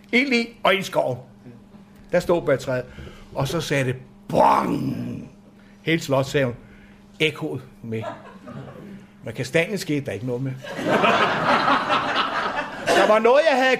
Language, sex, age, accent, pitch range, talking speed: Danish, male, 60-79, native, 140-205 Hz, 145 wpm